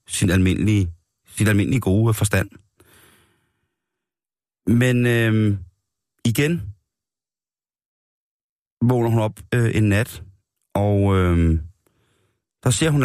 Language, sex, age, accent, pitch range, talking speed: Danish, male, 30-49, native, 100-120 Hz, 85 wpm